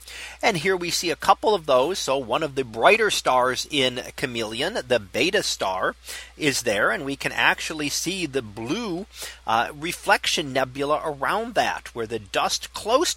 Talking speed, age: 170 wpm, 40-59